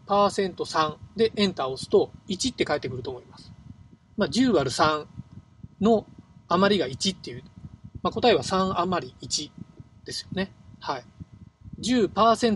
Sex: male